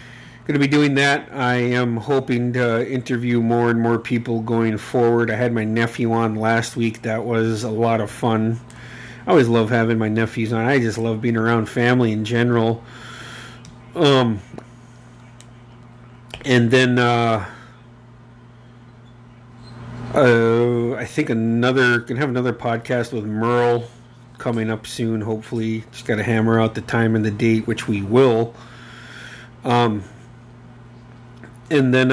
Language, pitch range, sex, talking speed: English, 115-125 Hz, male, 150 wpm